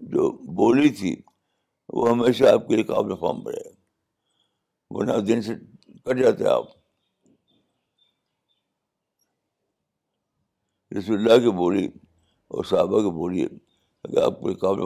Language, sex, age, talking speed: Urdu, male, 60-79, 115 wpm